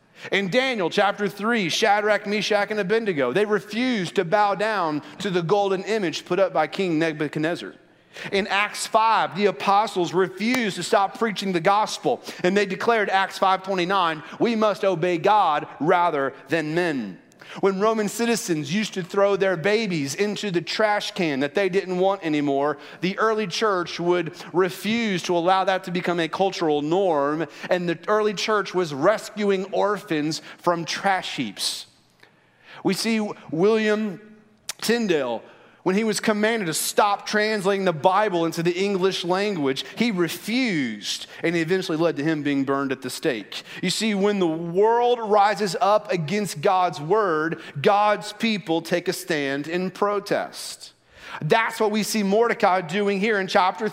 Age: 30-49